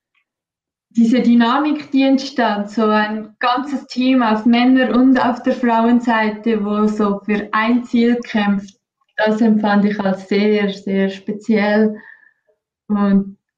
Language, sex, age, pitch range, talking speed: German, female, 20-39, 210-235 Hz, 125 wpm